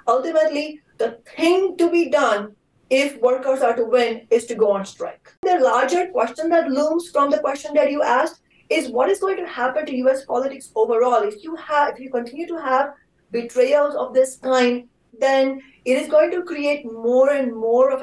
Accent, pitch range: Indian, 235-290 Hz